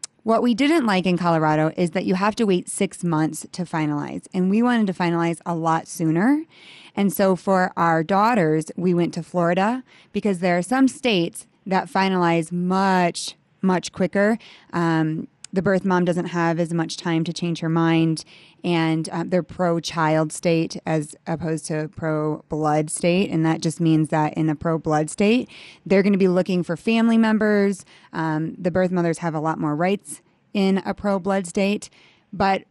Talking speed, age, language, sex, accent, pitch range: 180 wpm, 20-39, English, female, American, 165-200 Hz